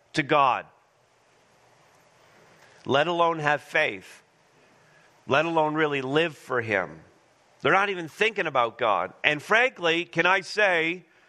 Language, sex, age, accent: English, male, 40-59, American